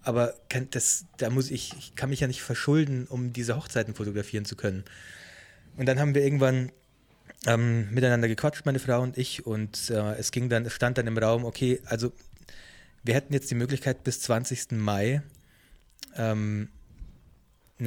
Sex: male